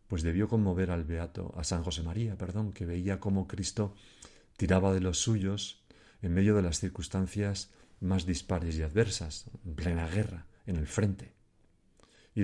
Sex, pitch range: male, 90-110 Hz